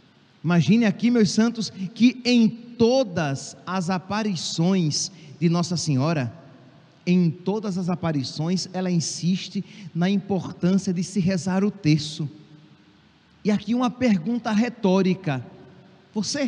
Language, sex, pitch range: Portuguese, male, 165-210 Hz